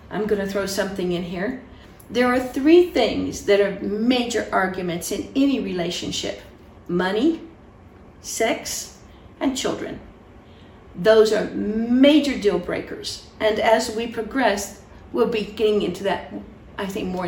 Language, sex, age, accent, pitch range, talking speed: English, female, 50-69, American, 205-295 Hz, 135 wpm